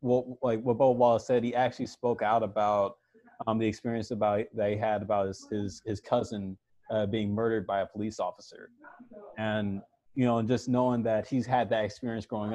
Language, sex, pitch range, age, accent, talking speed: English, male, 105-120 Hz, 20-39, American, 200 wpm